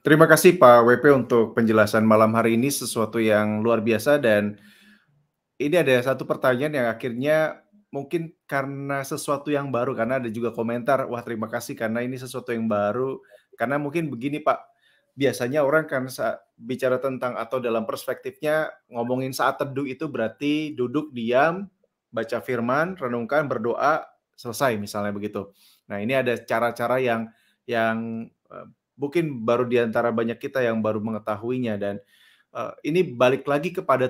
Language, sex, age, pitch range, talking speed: Malay, male, 30-49, 115-145 Hz, 150 wpm